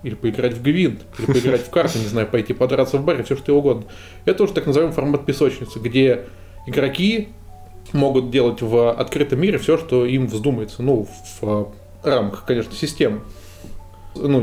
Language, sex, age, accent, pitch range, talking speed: Russian, male, 20-39, native, 110-145 Hz, 175 wpm